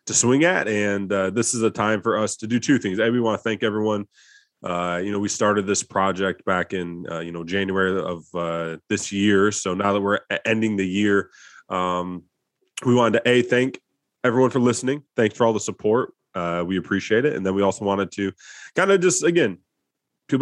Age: 20-39